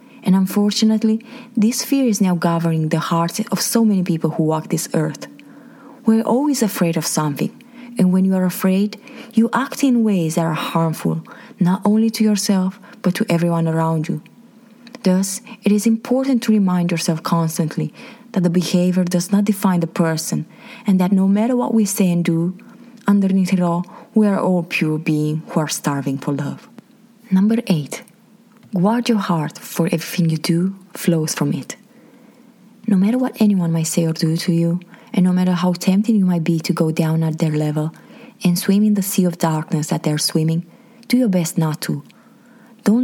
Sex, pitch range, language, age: female, 170-230 Hz, English, 20-39